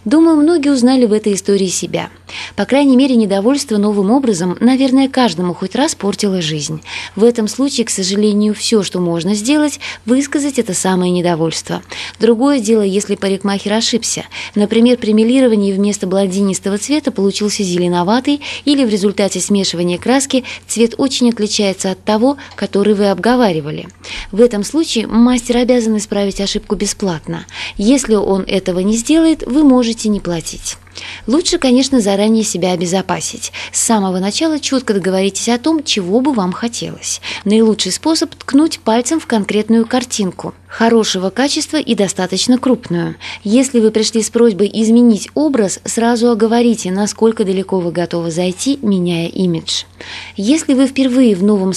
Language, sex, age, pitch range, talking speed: Russian, female, 20-39, 195-250 Hz, 145 wpm